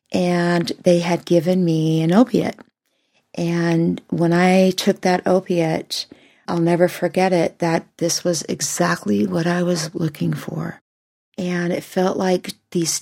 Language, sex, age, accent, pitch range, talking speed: English, female, 40-59, American, 170-205 Hz, 145 wpm